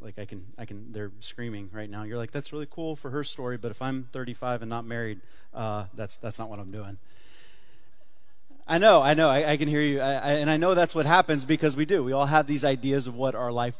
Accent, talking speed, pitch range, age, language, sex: American, 260 wpm, 120-160 Hz, 30-49, English, male